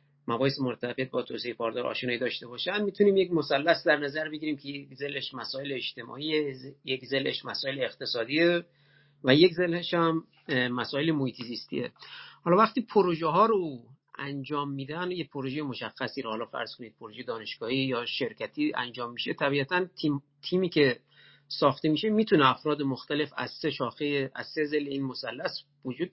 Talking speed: 155 wpm